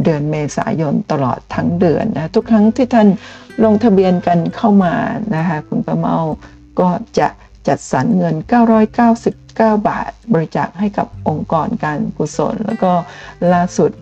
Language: Thai